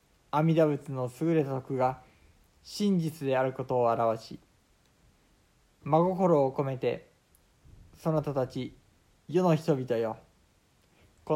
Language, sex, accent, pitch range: Japanese, male, native, 110-155 Hz